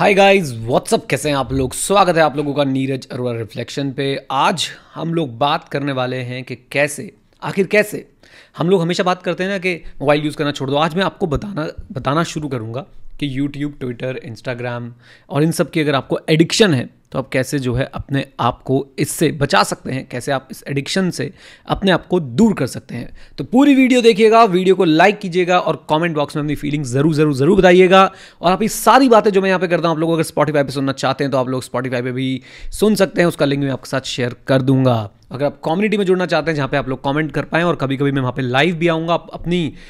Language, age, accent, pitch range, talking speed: Hindi, 30-49, native, 135-170 Hz, 240 wpm